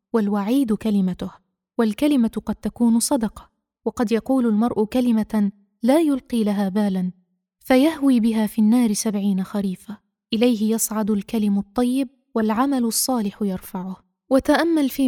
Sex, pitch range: female, 205-250 Hz